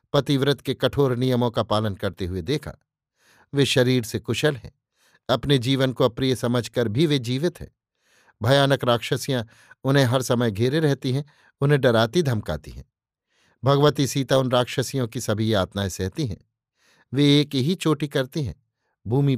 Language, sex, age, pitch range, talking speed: Hindi, male, 50-69, 120-145 Hz, 160 wpm